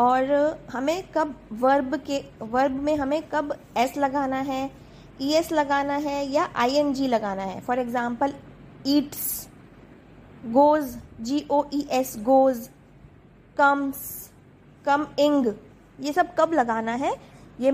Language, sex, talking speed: Hindi, female, 130 wpm